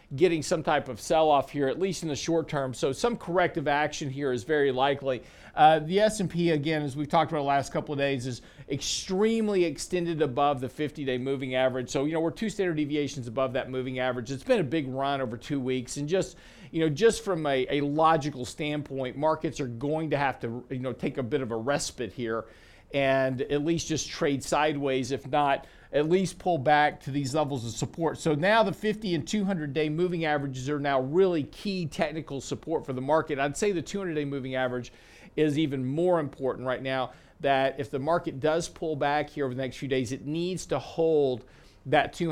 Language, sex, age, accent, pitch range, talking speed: English, male, 50-69, American, 135-165 Hz, 215 wpm